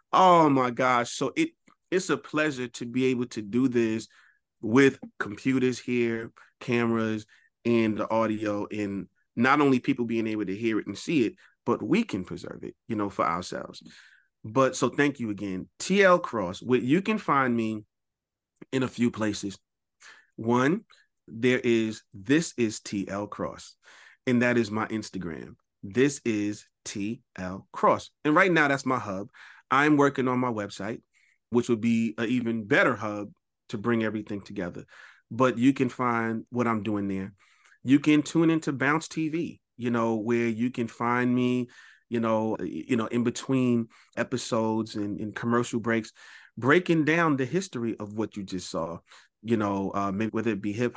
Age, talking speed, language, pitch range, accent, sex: 30-49, 170 wpm, English, 105-125 Hz, American, male